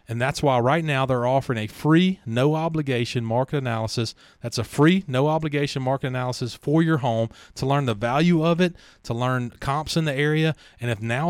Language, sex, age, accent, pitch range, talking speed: English, male, 30-49, American, 120-155 Hz, 190 wpm